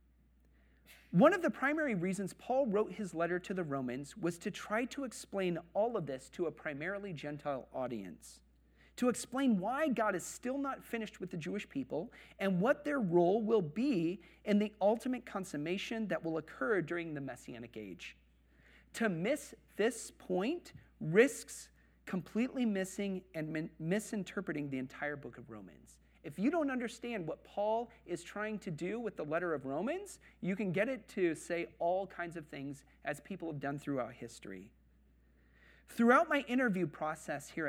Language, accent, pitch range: English, American, 140-215 Hz